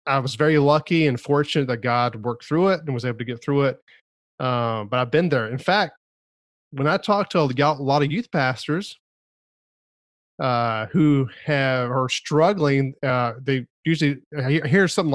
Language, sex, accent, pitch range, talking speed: English, male, American, 125-165 Hz, 175 wpm